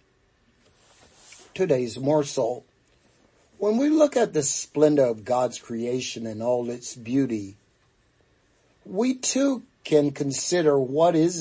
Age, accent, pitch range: 50-69, American, 125-170 Hz